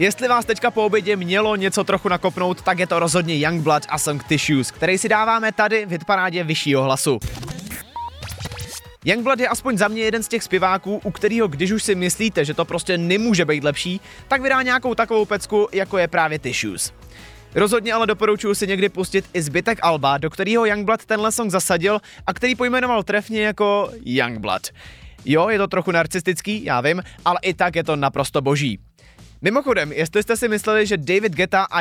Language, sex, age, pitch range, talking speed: Czech, male, 20-39, 155-210 Hz, 185 wpm